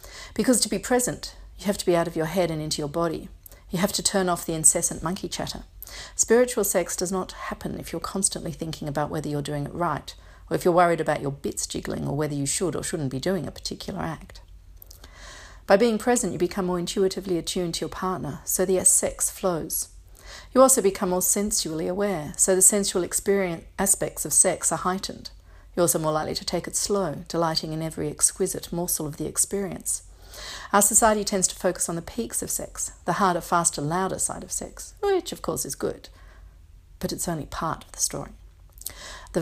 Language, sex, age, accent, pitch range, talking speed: English, female, 50-69, Australian, 155-190 Hz, 205 wpm